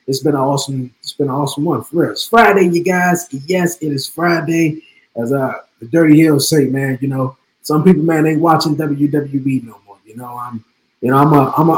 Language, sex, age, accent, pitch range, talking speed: English, male, 20-39, American, 145-175 Hz, 235 wpm